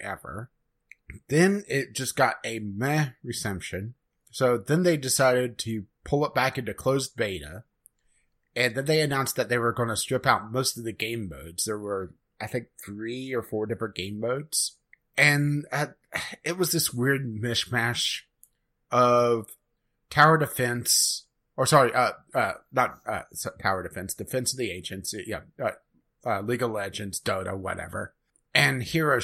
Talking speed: 160 wpm